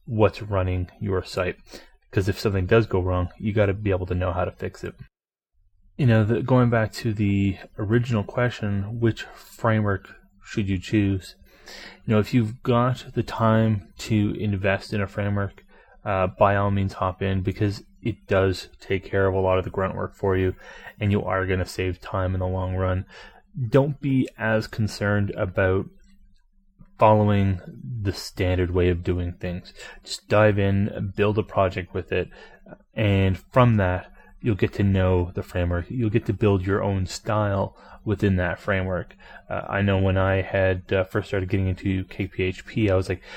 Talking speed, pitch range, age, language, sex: 185 wpm, 95-110 Hz, 30-49, English, male